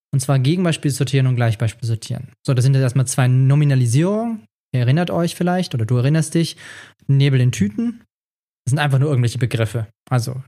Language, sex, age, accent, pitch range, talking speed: German, male, 20-39, German, 130-165 Hz, 185 wpm